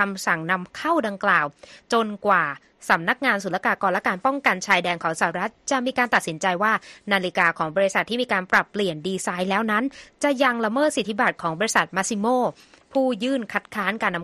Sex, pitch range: female, 185-250 Hz